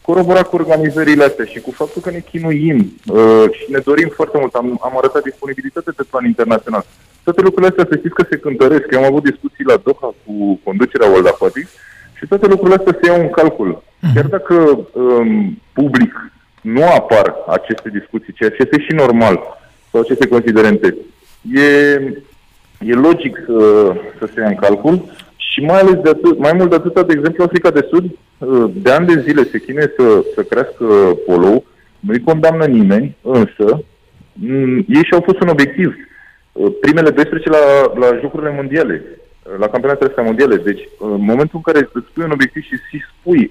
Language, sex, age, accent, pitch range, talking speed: Romanian, male, 20-39, native, 130-190 Hz, 175 wpm